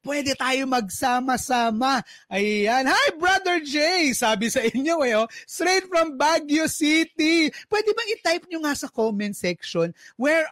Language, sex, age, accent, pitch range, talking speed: Filipino, male, 30-49, native, 215-295 Hz, 135 wpm